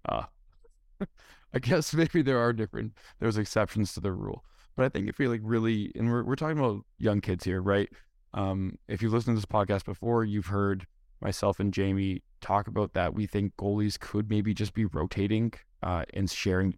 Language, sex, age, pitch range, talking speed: English, male, 20-39, 95-115 Hz, 195 wpm